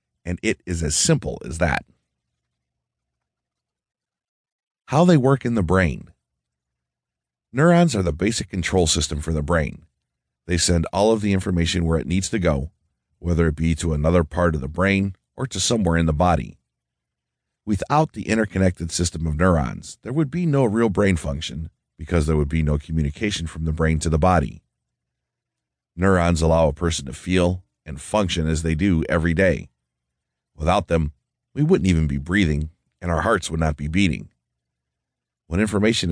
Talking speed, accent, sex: 170 wpm, American, male